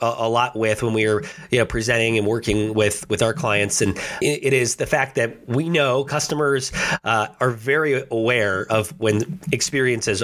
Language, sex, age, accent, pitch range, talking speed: English, male, 30-49, American, 110-140 Hz, 180 wpm